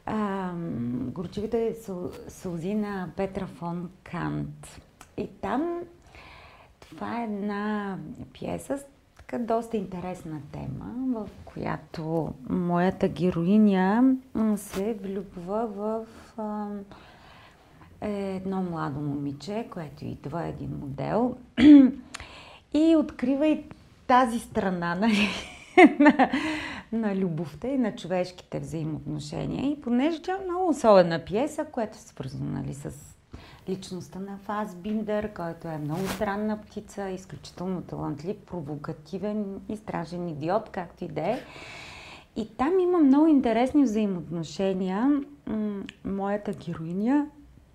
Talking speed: 105 wpm